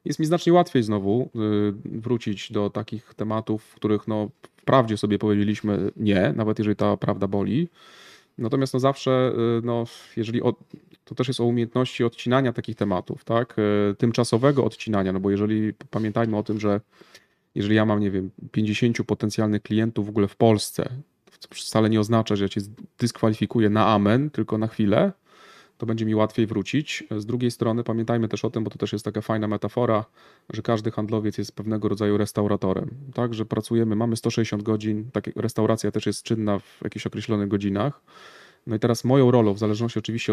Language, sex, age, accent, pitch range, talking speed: Polish, male, 30-49, native, 105-120 Hz, 180 wpm